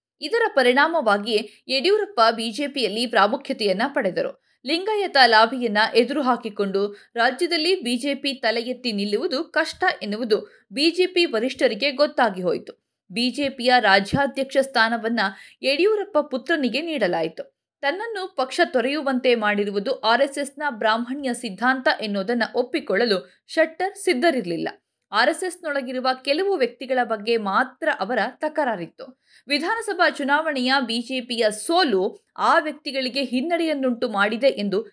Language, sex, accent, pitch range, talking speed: Kannada, female, native, 225-305 Hz, 90 wpm